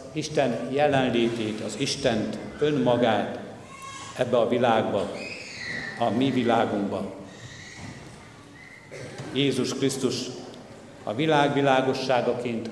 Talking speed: 70 wpm